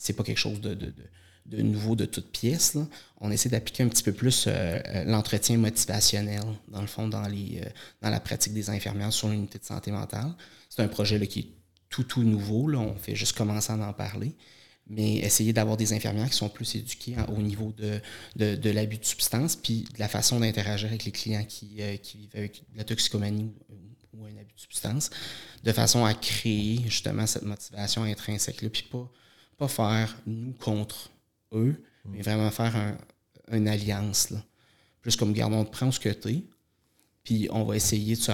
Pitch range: 105-115 Hz